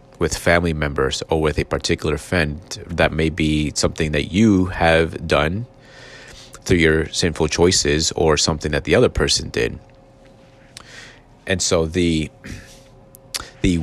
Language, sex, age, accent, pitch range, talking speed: English, male, 30-49, American, 80-105 Hz, 135 wpm